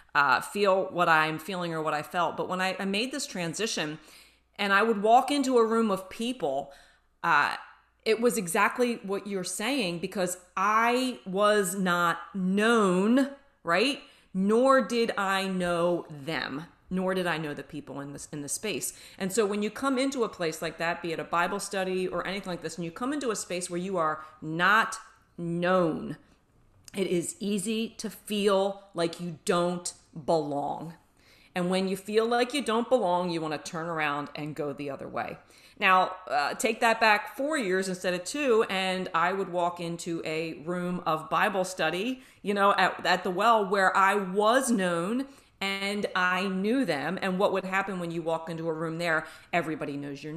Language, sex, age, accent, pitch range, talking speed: English, female, 30-49, American, 165-210 Hz, 190 wpm